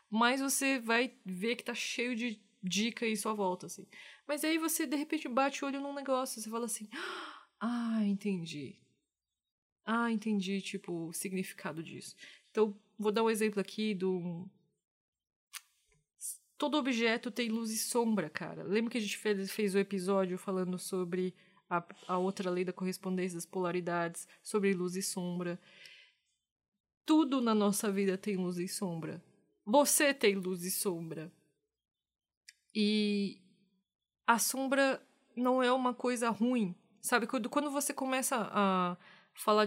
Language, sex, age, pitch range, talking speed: Portuguese, female, 20-39, 185-235 Hz, 150 wpm